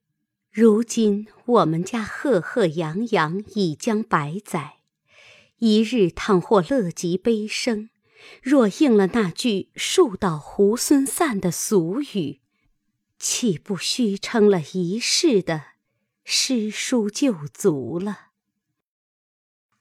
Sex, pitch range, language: female, 170-225 Hz, Chinese